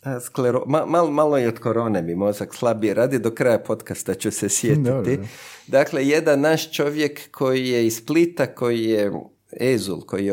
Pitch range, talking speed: 110-155 Hz, 170 wpm